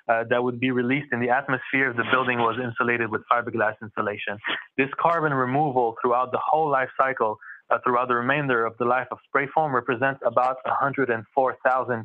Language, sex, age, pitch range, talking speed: English, male, 20-39, 110-130 Hz, 185 wpm